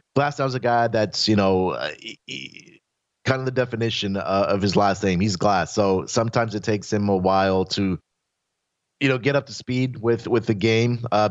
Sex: male